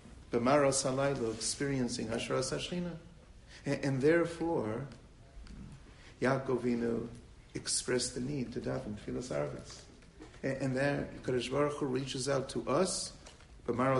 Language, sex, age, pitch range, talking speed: English, male, 50-69, 125-150 Hz, 110 wpm